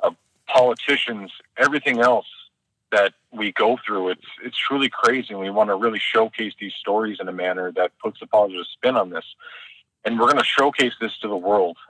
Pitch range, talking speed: 100-120 Hz, 195 wpm